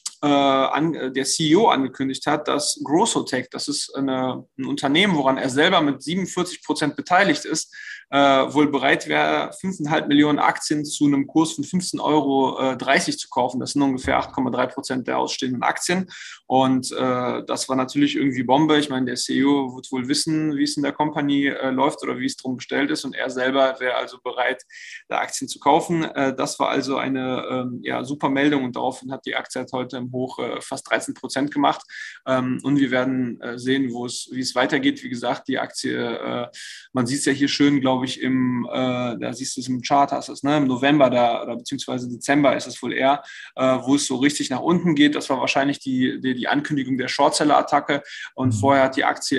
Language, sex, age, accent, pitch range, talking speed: German, male, 20-39, German, 130-150 Hz, 200 wpm